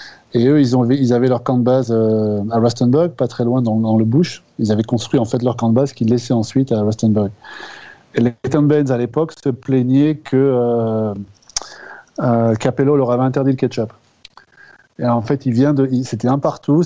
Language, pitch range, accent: French, 115-135 Hz, French